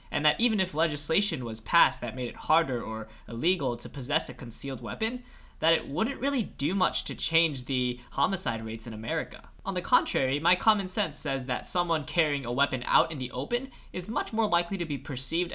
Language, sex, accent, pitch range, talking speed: English, male, American, 125-165 Hz, 210 wpm